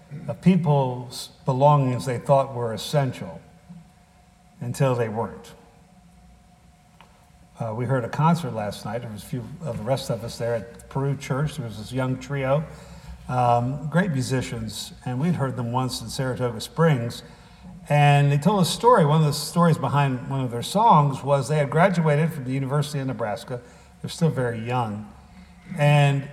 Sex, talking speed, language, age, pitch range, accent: male, 170 wpm, English, 60-79, 125-155 Hz, American